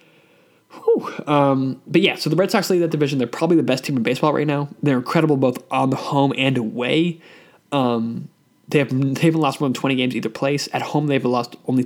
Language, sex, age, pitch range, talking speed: English, male, 20-39, 130-155 Hz, 230 wpm